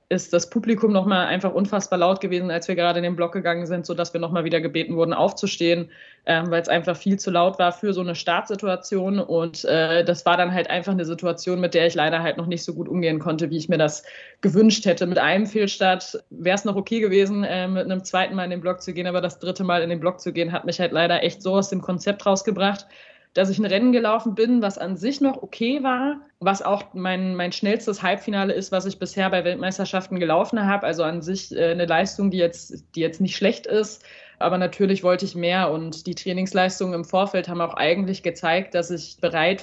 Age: 20-39